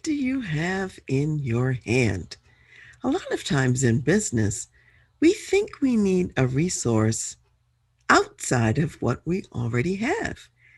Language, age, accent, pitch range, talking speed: English, 50-69, American, 125-190 Hz, 135 wpm